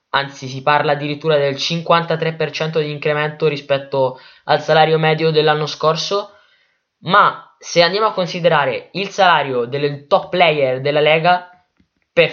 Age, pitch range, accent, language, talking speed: 10-29, 140-160 Hz, native, Italian, 130 wpm